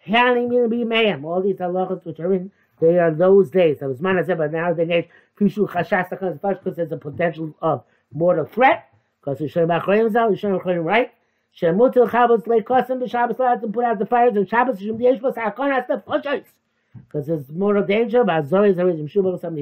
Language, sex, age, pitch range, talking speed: English, male, 60-79, 170-240 Hz, 85 wpm